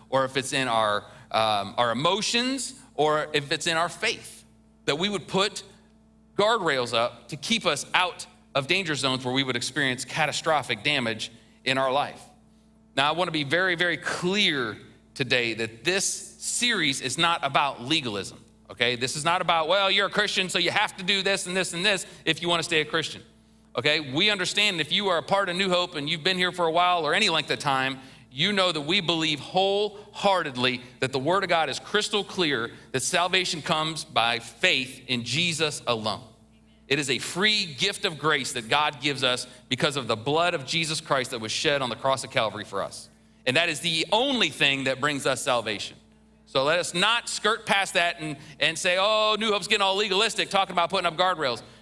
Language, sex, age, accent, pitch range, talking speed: English, male, 30-49, American, 130-190 Hz, 205 wpm